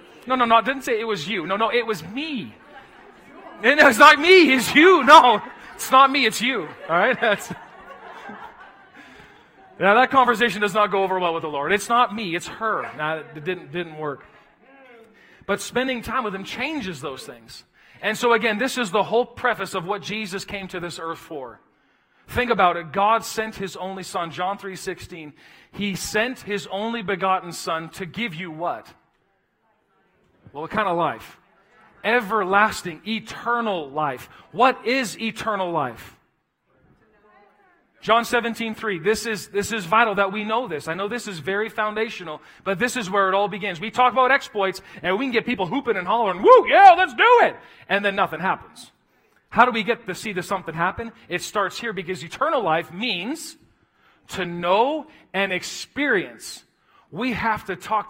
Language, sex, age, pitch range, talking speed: English, male, 40-59, 185-240 Hz, 185 wpm